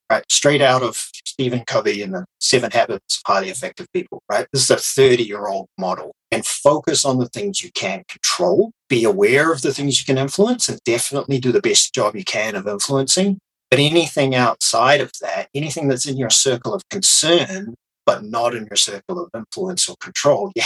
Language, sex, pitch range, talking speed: English, male, 120-185 Hz, 200 wpm